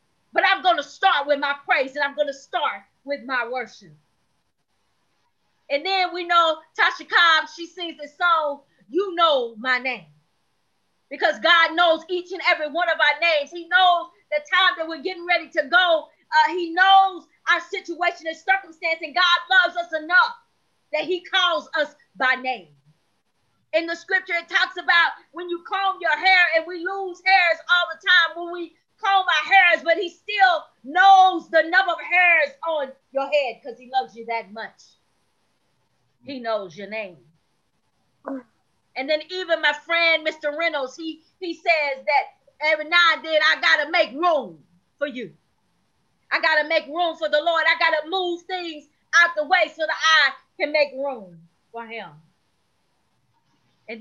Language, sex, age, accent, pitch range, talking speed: English, female, 30-49, American, 285-350 Hz, 175 wpm